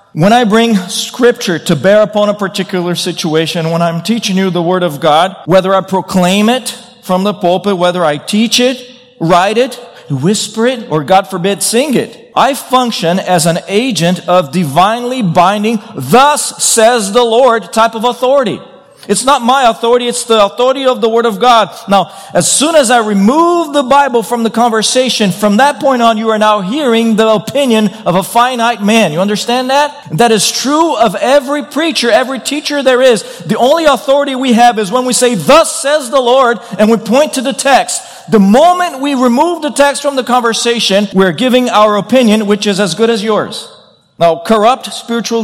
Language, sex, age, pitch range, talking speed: English, male, 40-59, 195-245 Hz, 190 wpm